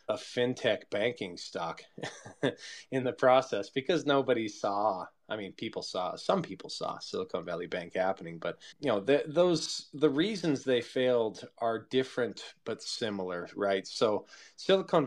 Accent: American